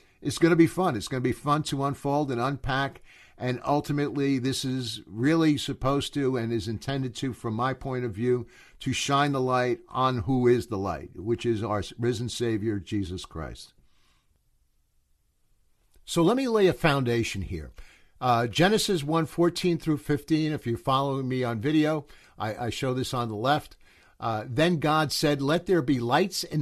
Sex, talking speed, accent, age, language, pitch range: male, 185 wpm, American, 50-69, English, 120-145 Hz